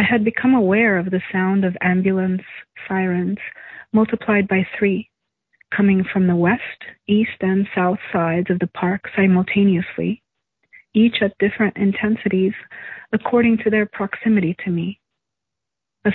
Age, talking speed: 40-59, 135 wpm